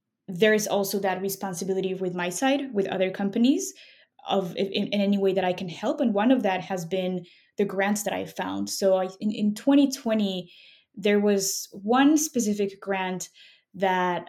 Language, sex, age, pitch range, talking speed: English, female, 20-39, 190-220 Hz, 175 wpm